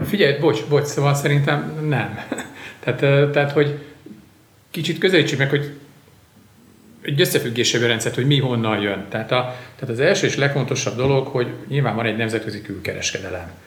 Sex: male